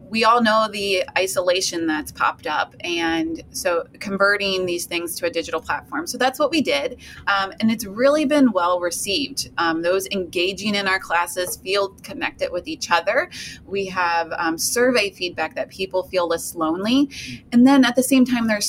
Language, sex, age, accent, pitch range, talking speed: English, female, 20-39, American, 170-235 Hz, 185 wpm